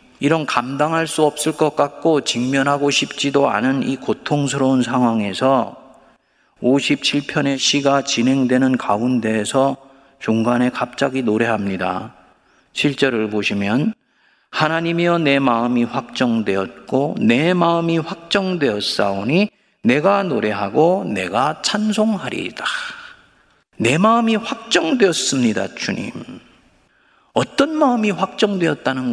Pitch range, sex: 130-215 Hz, male